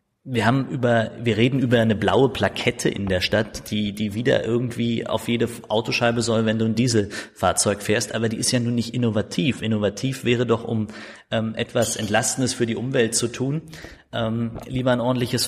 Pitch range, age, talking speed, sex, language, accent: 110-130 Hz, 30-49, 185 wpm, male, German, German